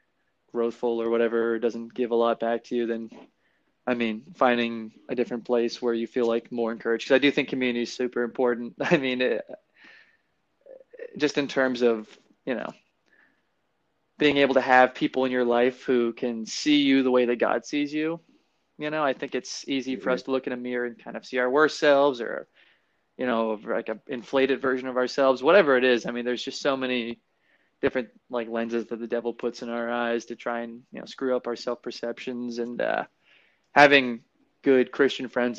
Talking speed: 200 wpm